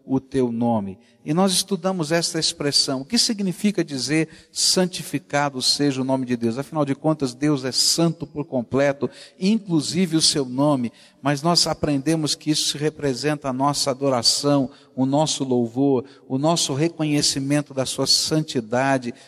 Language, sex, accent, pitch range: Portuguese, male, Brazilian, 140-190 Hz